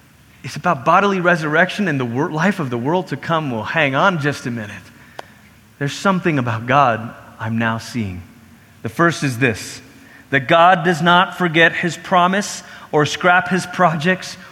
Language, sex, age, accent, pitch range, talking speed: English, male, 30-49, American, 120-170 Hz, 165 wpm